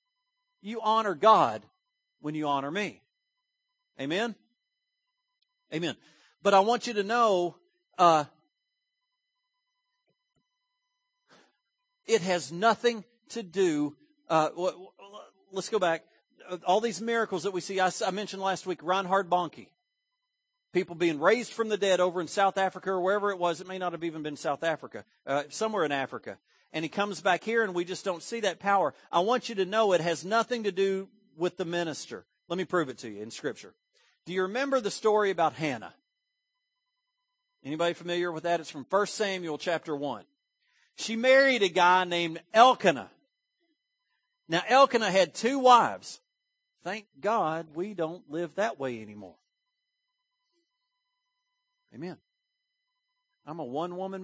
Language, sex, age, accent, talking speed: English, male, 50-69, American, 150 wpm